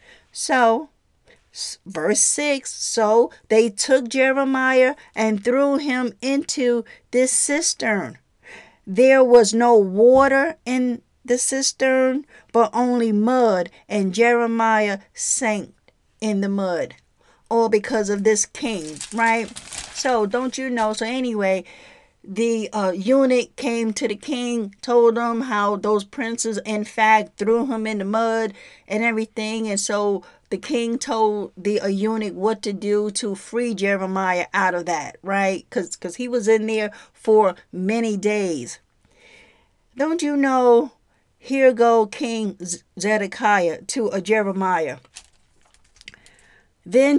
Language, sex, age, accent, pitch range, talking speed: English, female, 50-69, American, 205-250 Hz, 125 wpm